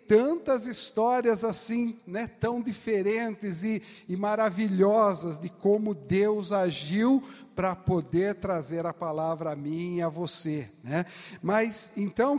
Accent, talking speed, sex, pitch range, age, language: Brazilian, 125 wpm, male, 170-210 Hz, 50-69, Portuguese